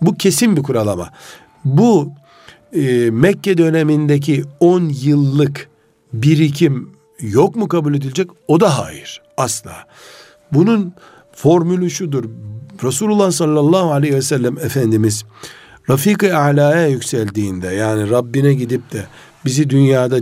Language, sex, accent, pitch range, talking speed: Turkish, male, native, 120-170 Hz, 110 wpm